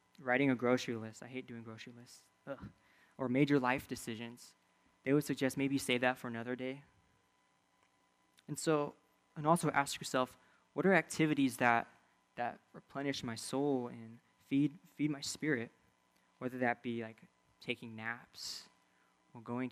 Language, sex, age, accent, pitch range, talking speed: English, male, 20-39, American, 115-135 Hz, 150 wpm